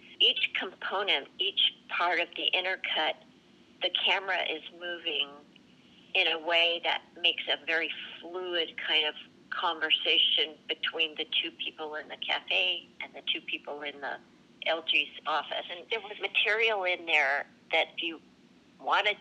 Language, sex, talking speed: English, female, 145 wpm